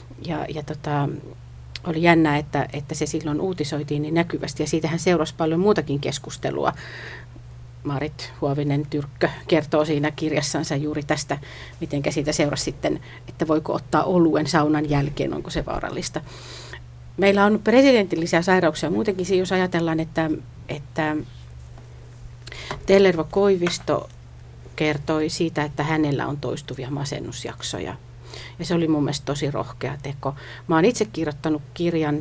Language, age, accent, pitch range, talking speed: Finnish, 40-59, native, 140-170 Hz, 125 wpm